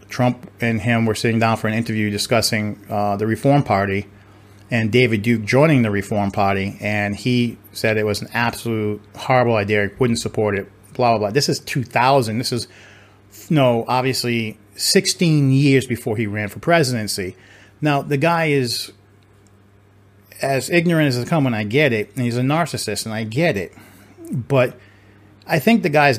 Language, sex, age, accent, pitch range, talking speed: English, male, 40-59, American, 105-135 Hz, 180 wpm